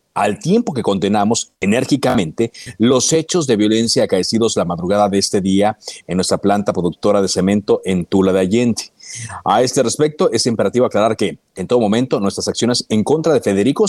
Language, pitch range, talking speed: Spanish, 95-120 Hz, 175 wpm